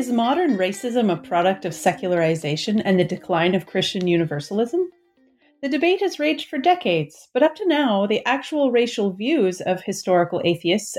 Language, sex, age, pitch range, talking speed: English, female, 30-49, 180-260 Hz, 165 wpm